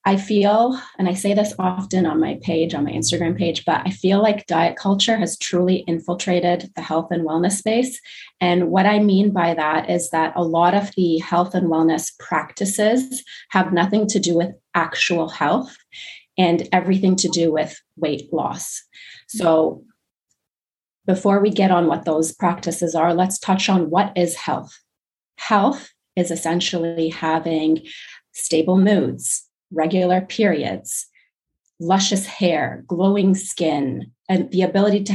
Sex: female